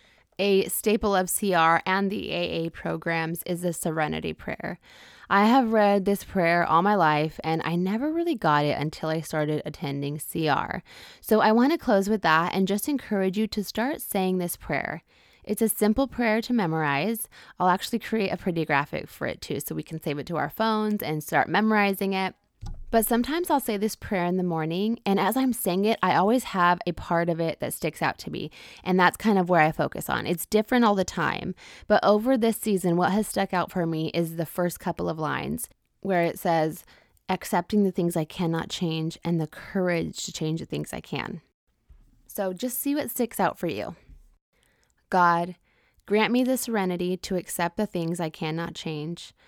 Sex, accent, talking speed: female, American, 205 wpm